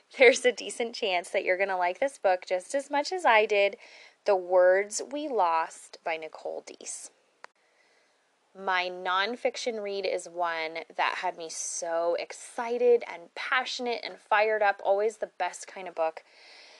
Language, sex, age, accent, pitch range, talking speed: English, female, 20-39, American, 180-230 Hz, 160 wpm